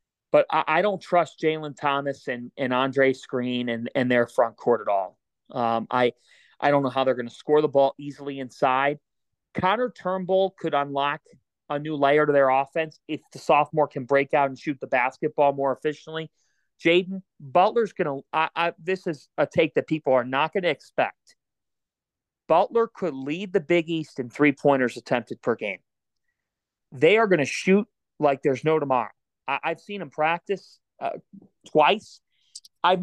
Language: English